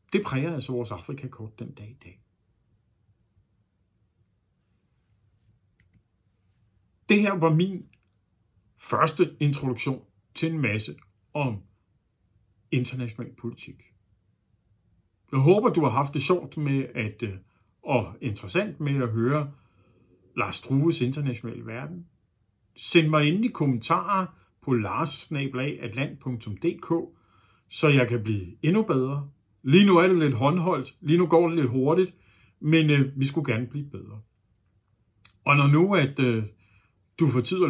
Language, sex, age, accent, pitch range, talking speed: Danish, male, 60-79, native, 105-145 Hz, 125 wpm